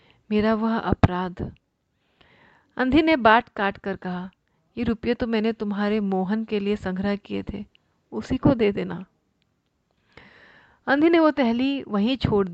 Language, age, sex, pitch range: Hindi, 40-59, female, 185-220 Hz